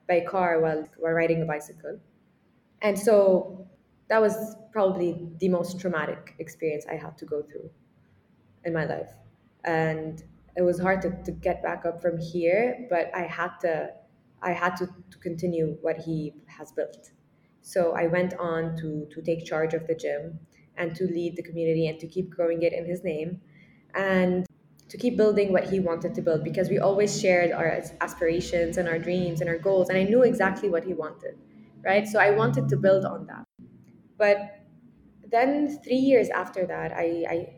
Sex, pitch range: female, 165-200 Hz